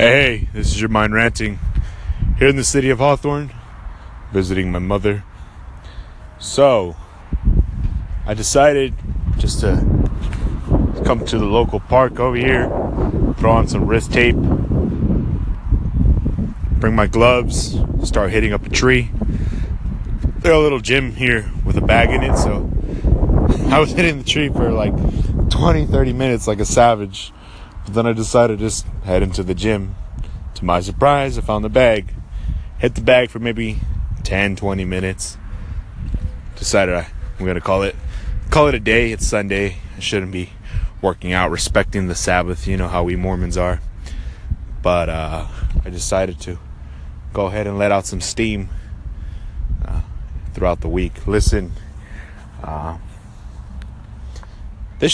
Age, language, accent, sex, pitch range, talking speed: 20-39, English, American, male, 85-110 Hz, 145 wpm